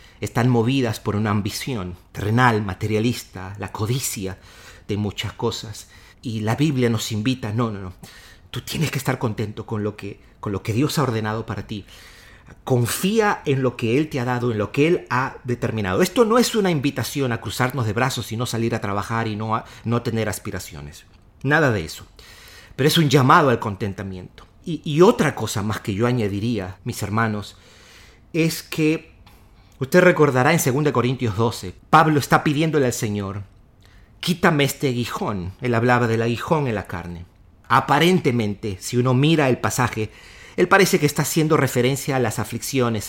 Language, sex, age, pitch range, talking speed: Spanish, male, 40-59, 105-140 Hz, 175 wpm